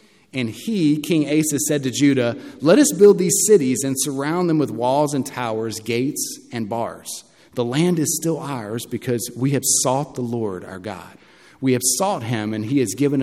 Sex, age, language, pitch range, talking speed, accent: male, 40-59, English, 110-140 Hz, 195 wpm, American